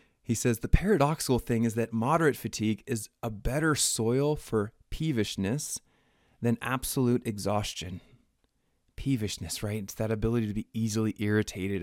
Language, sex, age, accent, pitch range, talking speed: English, male, 20-39, American, 105-130 Hz, 135 wpm